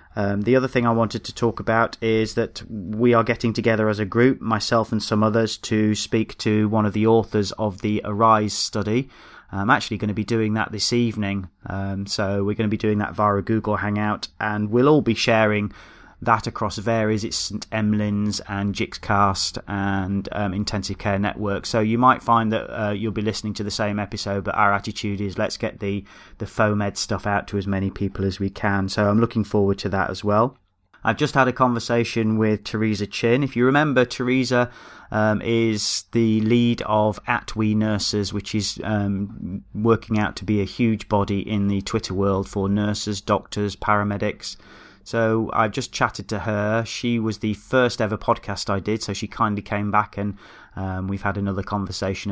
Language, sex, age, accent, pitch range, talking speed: English, male, 30-49, British, 100-115 Hz, 200 wpm